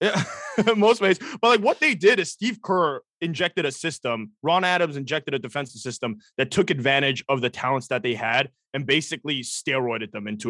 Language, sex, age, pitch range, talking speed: English, male, 20-39, 130-175 Hz, 190 wpm